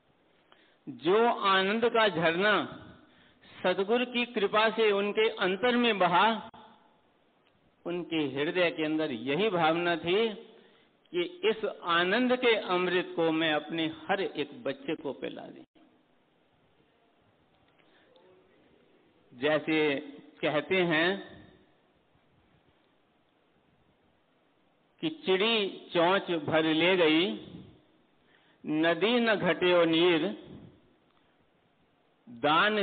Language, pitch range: Hindi, 155-220 Hz